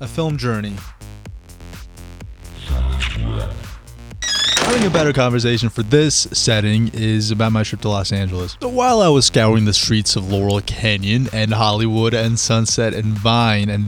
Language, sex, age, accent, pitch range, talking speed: English, male, 20-39, American, 105-130 Hz, 145 wpm